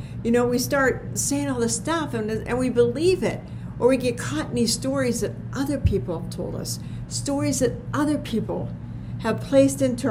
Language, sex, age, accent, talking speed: English, female, 60-79, American, 195 wpm